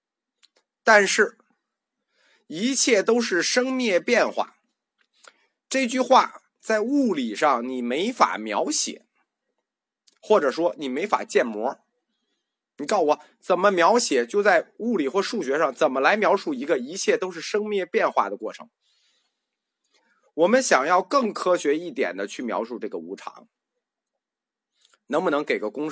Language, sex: Chinese, male